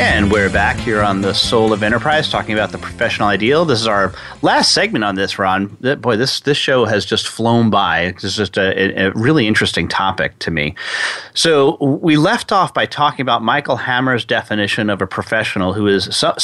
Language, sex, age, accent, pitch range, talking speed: English, male, 30-49, American, 100-125 Hz, 200 wpm